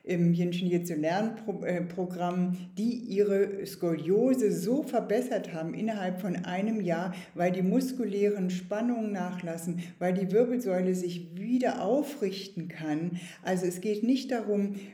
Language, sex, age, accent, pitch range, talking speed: German, female, 50-69, German, 170-210 Hz, 125 wpm